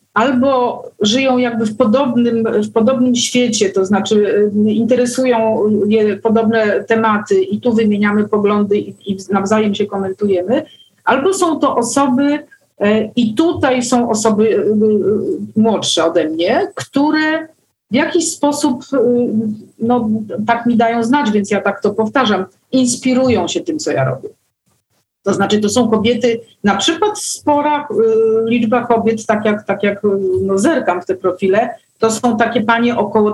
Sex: female